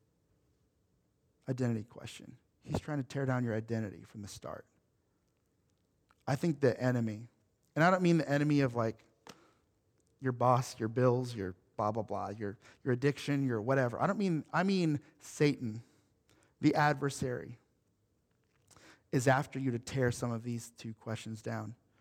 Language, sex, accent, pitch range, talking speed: English, male, American, 115-140 Hz, 155 wpm